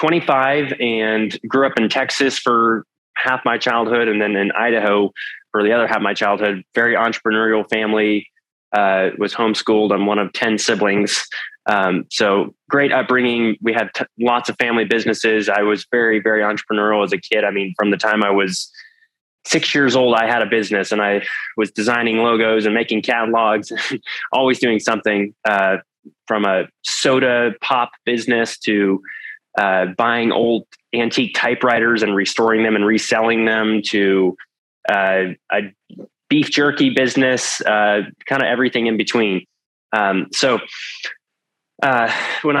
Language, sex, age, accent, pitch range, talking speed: English, male, 20-39, American, 105-120 Hz, 150 wpm